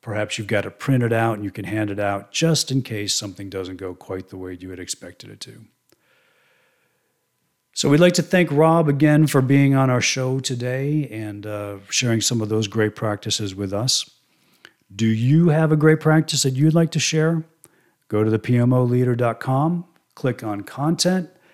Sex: male